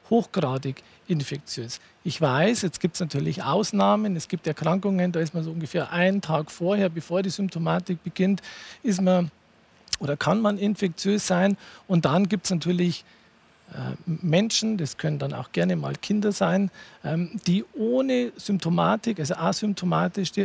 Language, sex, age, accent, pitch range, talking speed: German, male, 50-69, Austrian, 160-200 Hz, 150 wpm